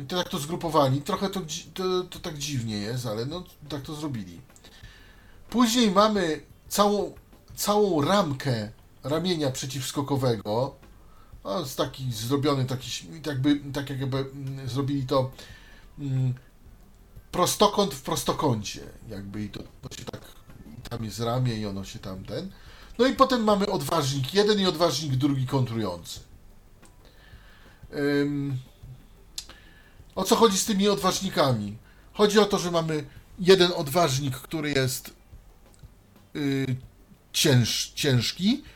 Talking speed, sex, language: 120 wpm, male, Polish